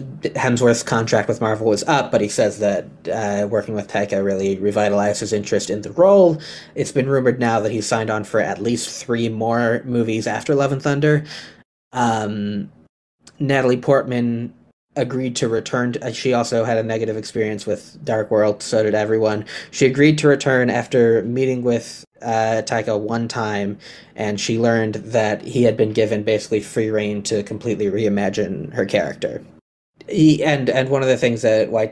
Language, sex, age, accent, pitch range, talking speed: English, male, 20-39, American, 105-120 Hz, 175 wpm